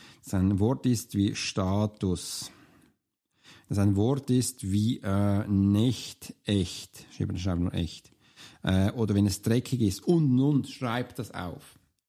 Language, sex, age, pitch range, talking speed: German, male, 50-69, 115-150 Hz, 120 wpm